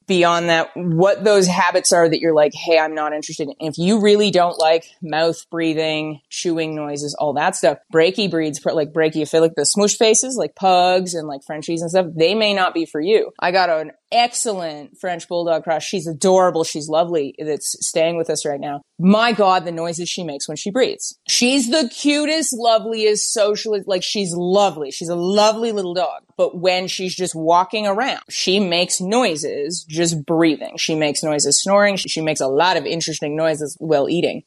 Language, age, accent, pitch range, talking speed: English, 20-39, American, 155-190 Hz, 190 wpm